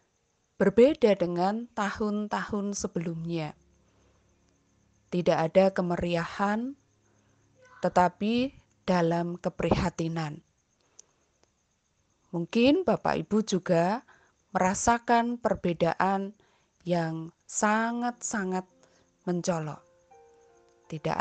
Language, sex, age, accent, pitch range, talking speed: Indonesian, female, 20-39, native, 165-215 Hz, 55 wpm